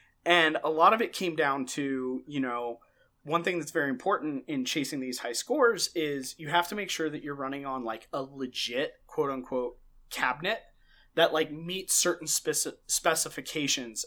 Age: 30-49